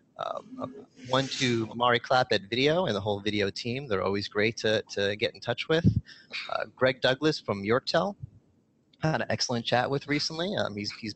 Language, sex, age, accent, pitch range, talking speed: English, male, 30-49, American, 115-155 Hz, 195 wpm